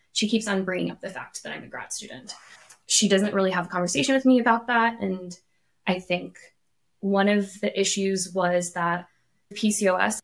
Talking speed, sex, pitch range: 190 wpm, female, 180-220 Hz